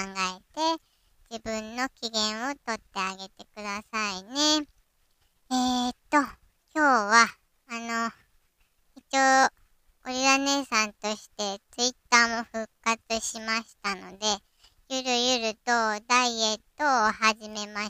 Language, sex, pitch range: Japanese, male, 210-255 Hz